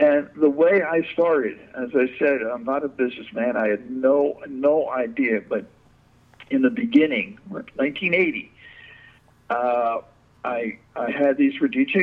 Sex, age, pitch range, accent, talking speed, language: male, 60-79, 130-170 Hz, American, 145 wpm, English